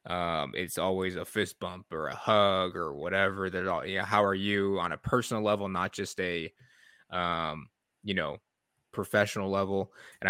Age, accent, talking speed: 20-39, American, 175 wpm